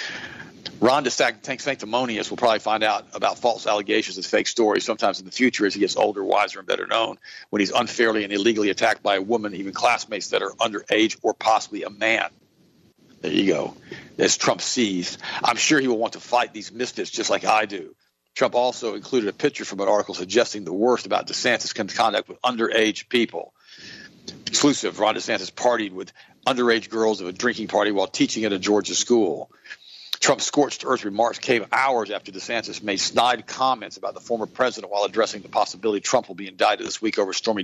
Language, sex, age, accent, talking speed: English, male, 50-69, American, 195 wpm